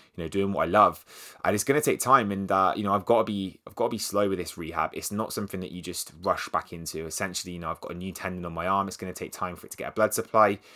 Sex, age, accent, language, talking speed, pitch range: male, 20-39, British, English, 320 wpm, 90-105 Hz